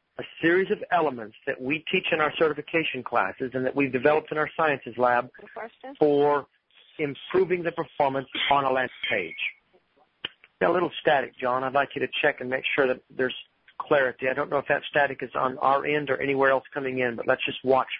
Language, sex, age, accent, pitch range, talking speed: English, male, 40-59, American, 135-165 Hz, 205 wpm